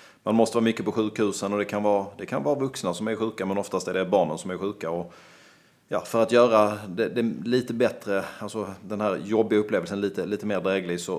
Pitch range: 95-115 Hz